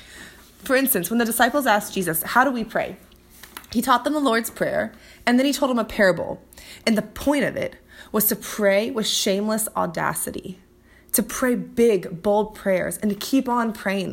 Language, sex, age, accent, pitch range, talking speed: English, female, 20-39, American, 190-235 Hz, 190 wpm